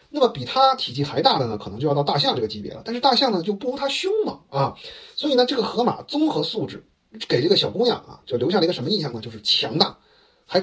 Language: Chinese